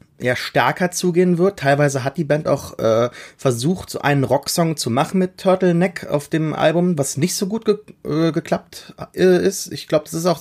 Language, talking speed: German, 195 wpm